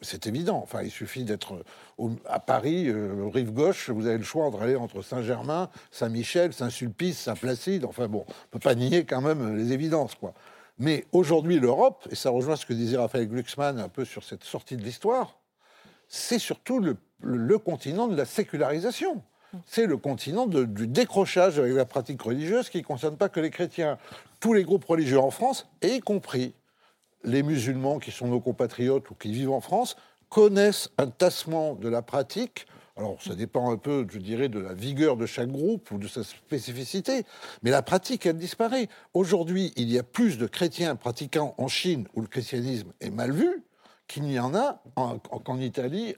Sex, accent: male, French